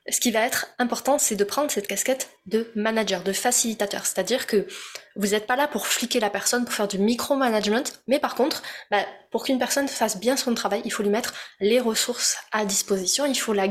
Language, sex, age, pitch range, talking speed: French, female, 20-39, 205-260 Hz, 220 wpm